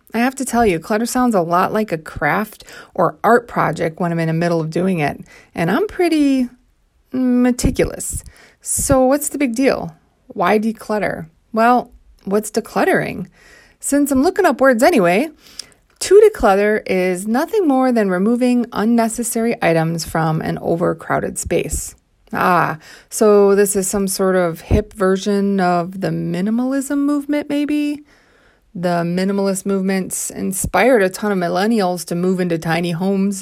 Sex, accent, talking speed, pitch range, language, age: female, American, 150 wpm, 185-255 Hz, English, 20-39